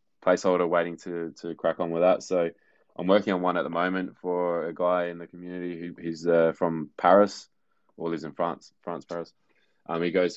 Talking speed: 210 wpm